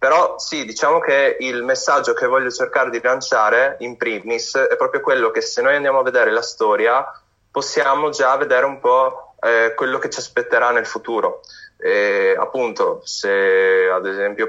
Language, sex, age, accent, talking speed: Italian, male, 20-39, native, 165 wpm